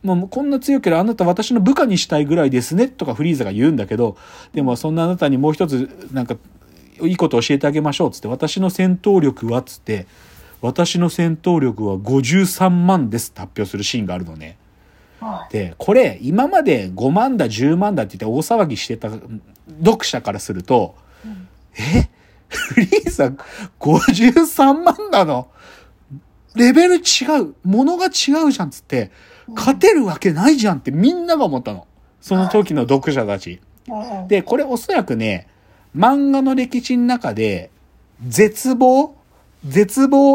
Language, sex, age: Japanese, male, 40-59